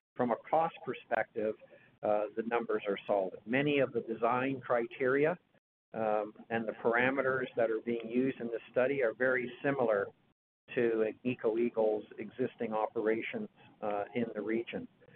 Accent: American